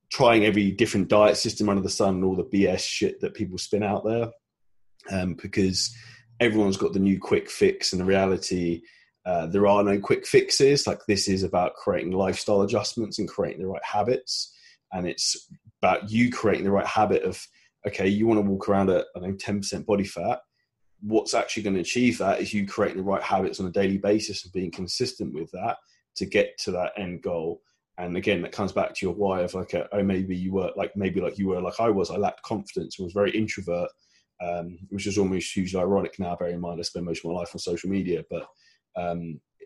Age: 20-39